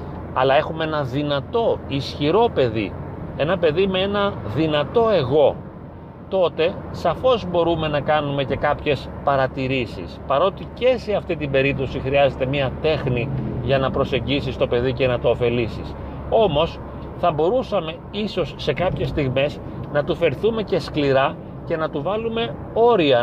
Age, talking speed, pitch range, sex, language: 40-59, 140 wpm, 135-180 Hz, male, Greek